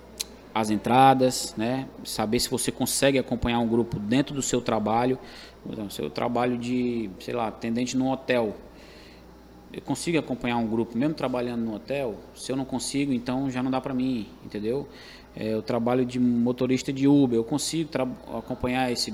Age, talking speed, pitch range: 20-39, 170 wpm, 120-140 Hz